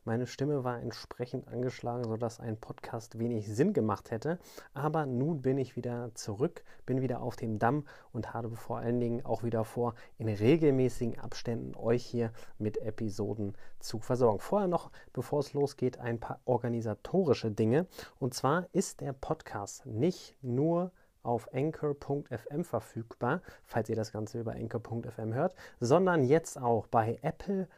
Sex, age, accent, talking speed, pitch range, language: male, 30-49, German, 155 wpm, 115-145 Hz, German